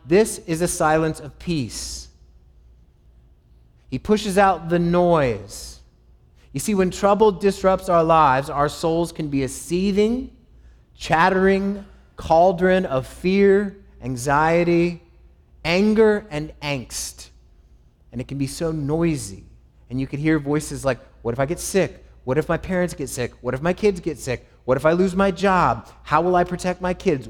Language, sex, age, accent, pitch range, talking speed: English, male, 30-49, American, 140-200 Hz, 160 wpm